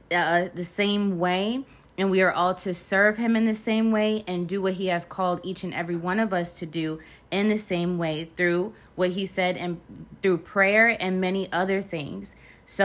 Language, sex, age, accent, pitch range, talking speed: English, female, 20-39, American, 170-195 Hz, 210 wpm